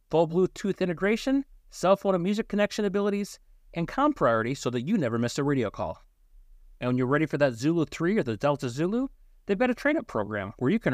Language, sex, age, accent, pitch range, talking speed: English, male, 30-49, American, 130-200 Hz, 220 wpm